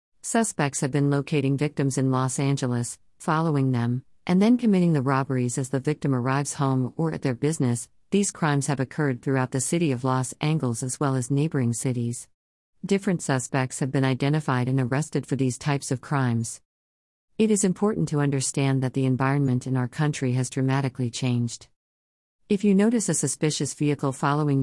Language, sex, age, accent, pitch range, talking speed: English, female, 50-69, American, 130-155 Hz, 175 wpm